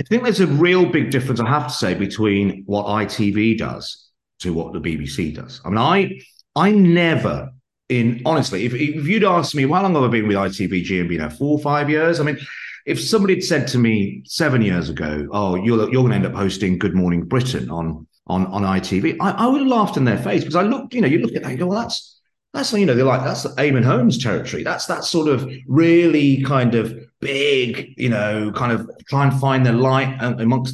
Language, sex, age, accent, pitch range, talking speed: English, male, 40-59, British, 95-145 Hz, 235 wpm